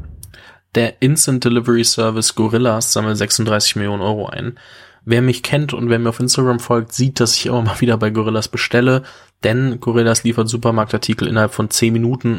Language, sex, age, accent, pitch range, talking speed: German, male, 20-39, German, 110-120 Hz, 175 wpm